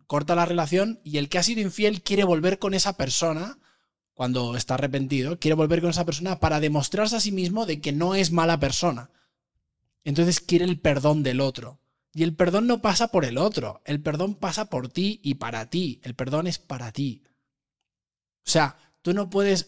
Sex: male